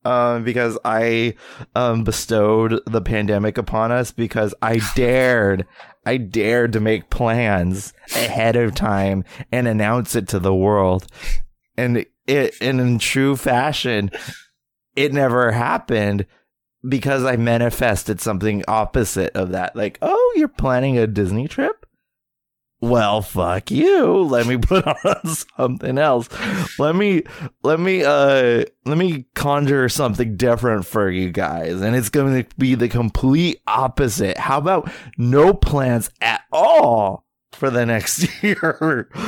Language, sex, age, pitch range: English, male, 20-39, 110-135 Hz